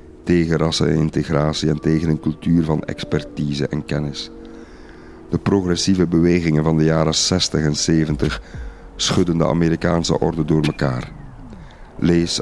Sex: male